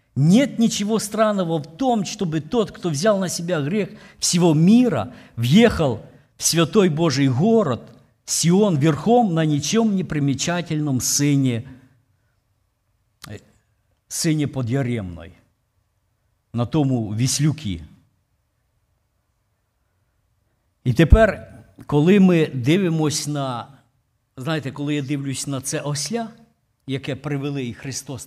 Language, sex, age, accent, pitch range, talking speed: Ukrainian, male, 50-69, native, 110-180 Hz, 100 wpm